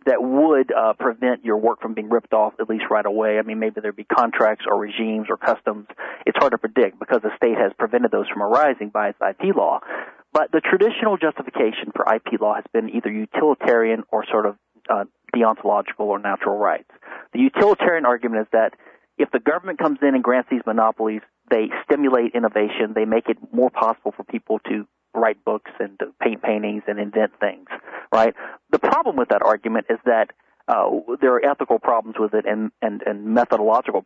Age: 40-59